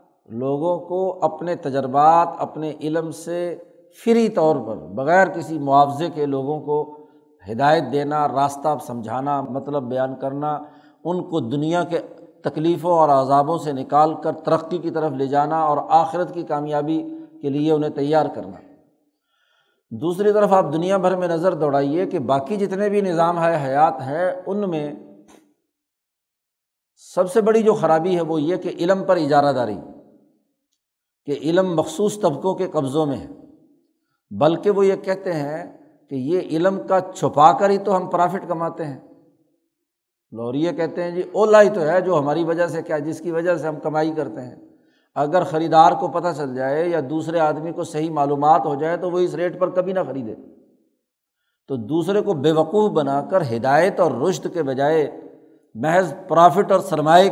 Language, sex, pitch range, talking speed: Urdu, male, 145-185 Hz, 170 wpm